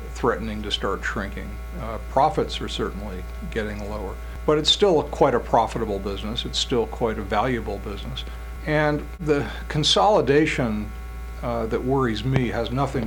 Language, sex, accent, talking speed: English, male, American, 145 wpm